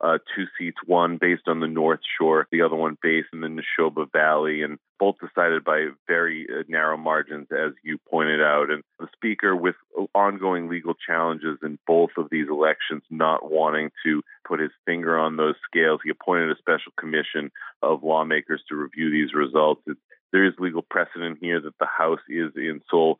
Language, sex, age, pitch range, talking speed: English, male, 30-49, 75-85 Hz, 185 wpm